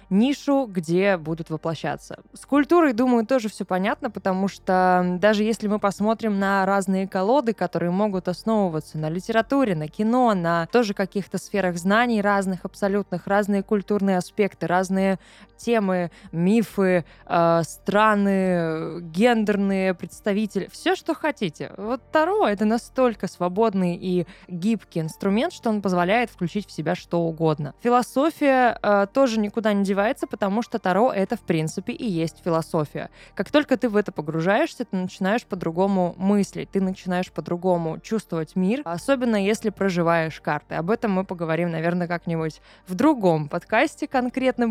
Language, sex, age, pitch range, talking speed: Russian, female, 20-39, 175-220 Hz, 140 wpm